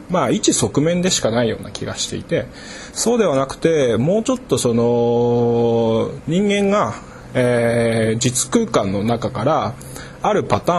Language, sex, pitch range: Japanese, male, 115-185 Hz